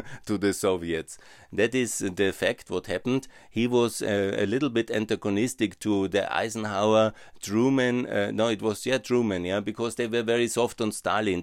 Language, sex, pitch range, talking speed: German, male, 95-115 Hz, 180 wpm